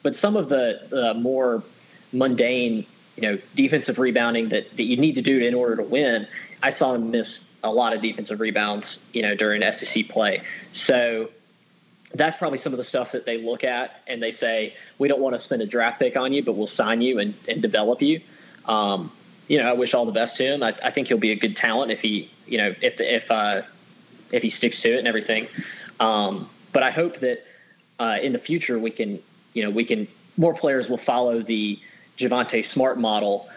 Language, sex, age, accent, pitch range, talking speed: English, male, 20-39, American, 115-135 Hz, 220 wpm